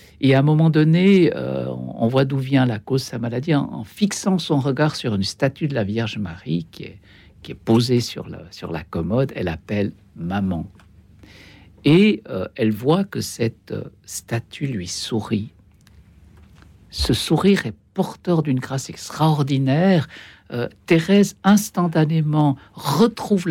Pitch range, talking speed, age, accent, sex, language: 110-170 Hz, 160 wpm, 60-79, French, male, French